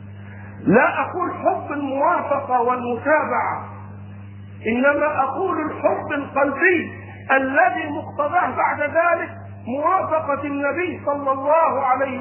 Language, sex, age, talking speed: Arabic, male, 50-69, 90 wpm